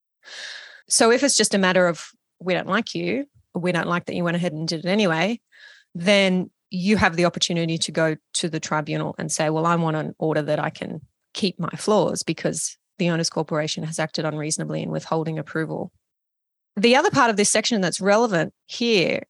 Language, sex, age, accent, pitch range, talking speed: English, female, 30-49, Australian, 165-210 Hz, 200 wpm